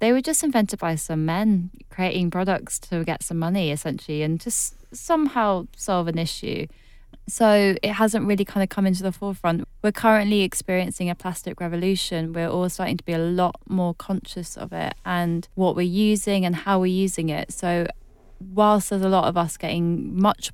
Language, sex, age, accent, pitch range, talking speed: English, female, 20-39, British, 165-190 Hz, 190 wpm